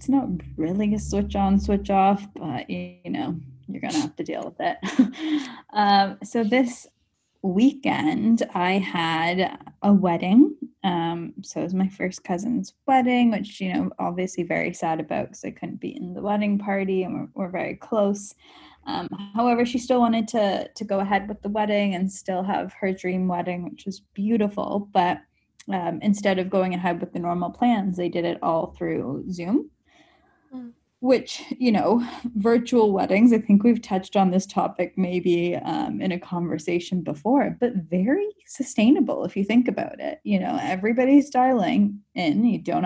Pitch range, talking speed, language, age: 180-245 Hz, 175 wpm, English, 10-29